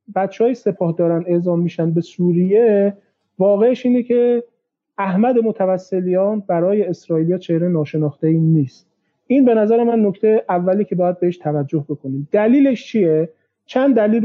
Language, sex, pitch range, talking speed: Persian, male, 165-215 Hz, 145 wpm